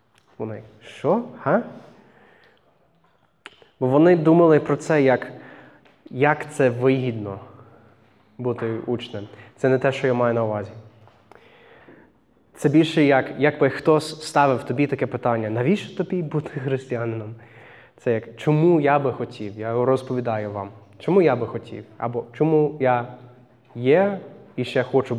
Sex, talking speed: male, 130 wpm